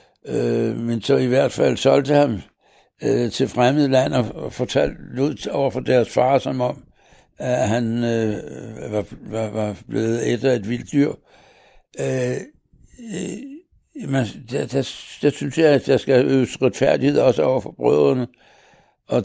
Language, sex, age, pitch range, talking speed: Danish, male, 60-79, 115-135 Hz, 130 wpm